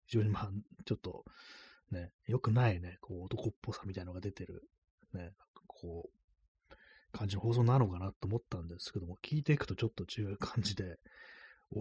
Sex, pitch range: male, 85-115 Hz